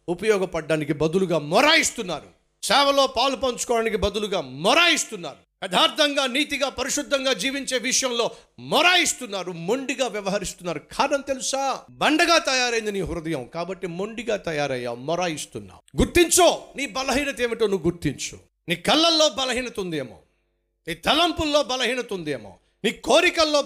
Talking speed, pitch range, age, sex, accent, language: 105 wpm, 160-255 Hz, 50-69, male, native, Telugu